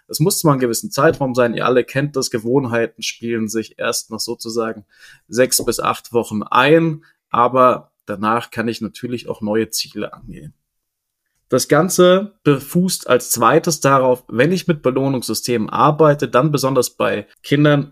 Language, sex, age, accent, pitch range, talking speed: German, male, 20-39, German, 120-150 Hz, 155 wpm